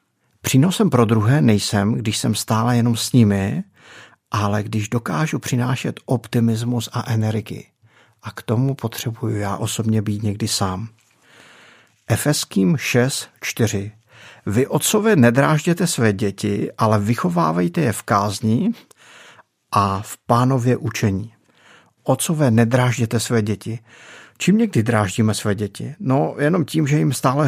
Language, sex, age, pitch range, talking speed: Czech, male, 50-69, 110-125 Hz, 125 wpm